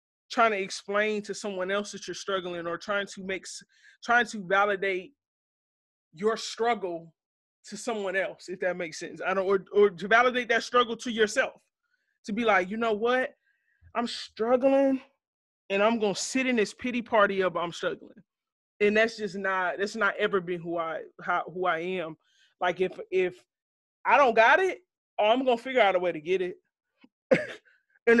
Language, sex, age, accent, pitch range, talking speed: English, male, 20-39, American, 185-240 Hz, 185 wpm